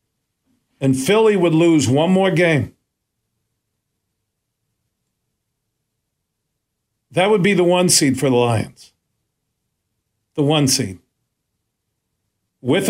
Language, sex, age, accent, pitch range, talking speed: English, male, 50-69, American, 110-160 Hz, 95 wpm